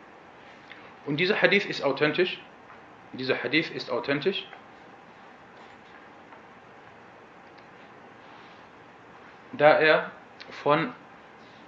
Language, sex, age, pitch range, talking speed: German, male, 40-59, 130-165 Hz, 60 wpm